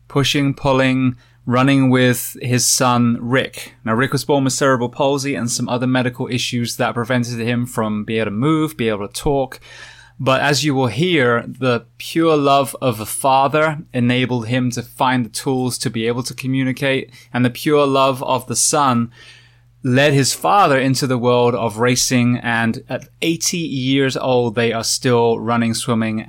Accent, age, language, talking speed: British, 20-39, English, 180 wpm